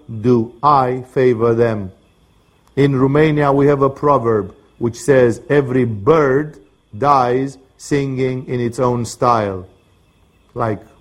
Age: 50-69